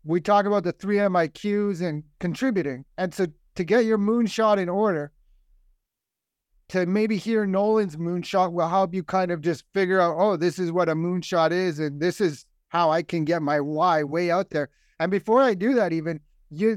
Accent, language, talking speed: American, English, 195 wpm